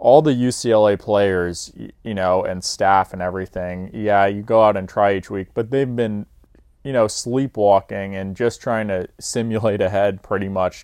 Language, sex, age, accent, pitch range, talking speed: English, male, 20-39, American, 90-105 Hz, 175 wpm